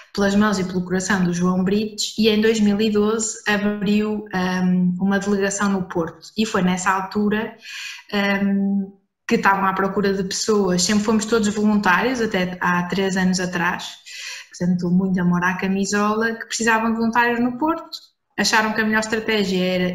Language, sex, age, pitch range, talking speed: English, female, 20-39, 190-220 Hz, 165 wpm